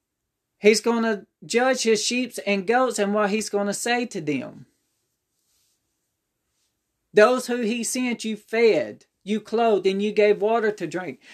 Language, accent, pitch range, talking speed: English, American, 190-230 Hz, 160 wpm